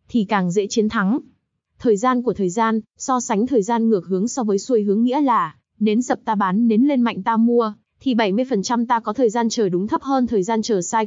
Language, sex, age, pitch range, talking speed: Vietnamese, female, 20-39, 200-245 Hz, 245 wpm